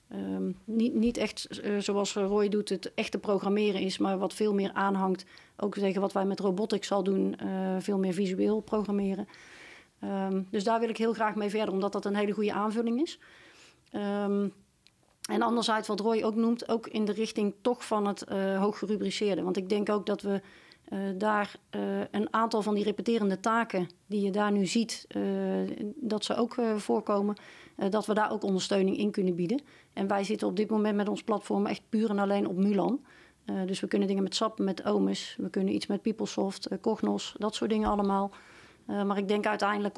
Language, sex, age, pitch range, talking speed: Dutch, female, 40-59, 195-215 Hz, 200 wpm